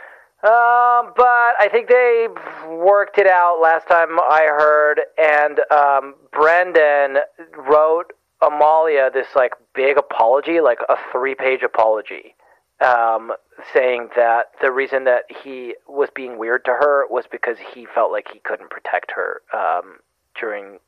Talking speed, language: 140 wpm, English